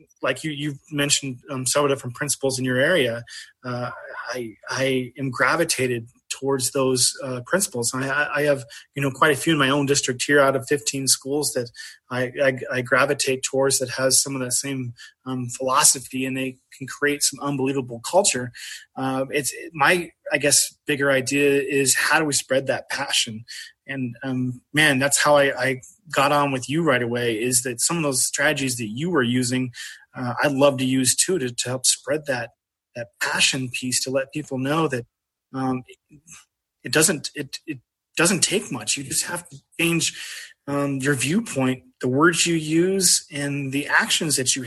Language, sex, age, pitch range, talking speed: English, male, 20-39, 130-145 Hz, 190 wpm